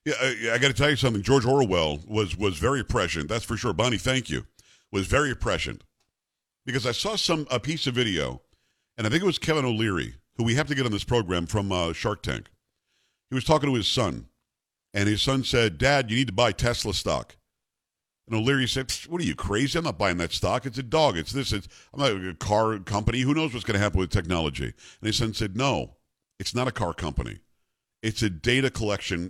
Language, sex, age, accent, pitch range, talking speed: English, male, 50-69, American, 95-130 Hz, 230 wpm